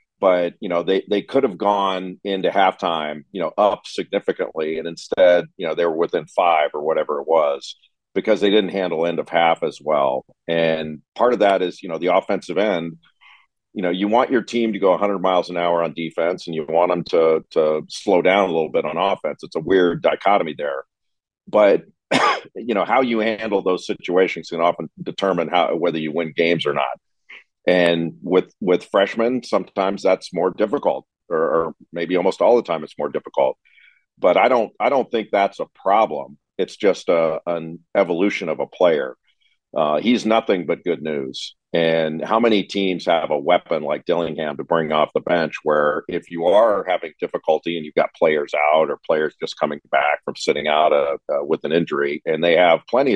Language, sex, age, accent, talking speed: English, male, 40-59, American, 200 wpm